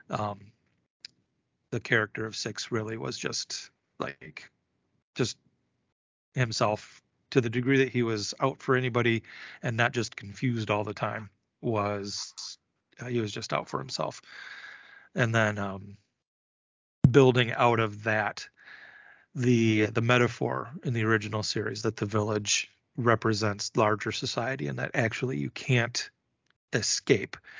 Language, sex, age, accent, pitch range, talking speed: English, male, 30-49, American, 105-125 Hz, 135 wpm